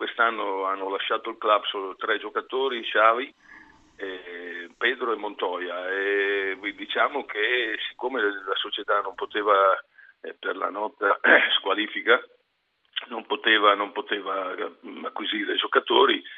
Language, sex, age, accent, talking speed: Italian, male, 50-69, native, 120 wpm